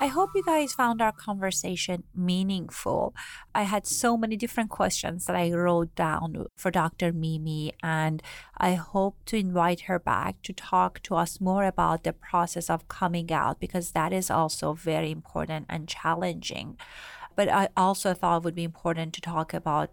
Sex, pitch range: female, 175-230 Hz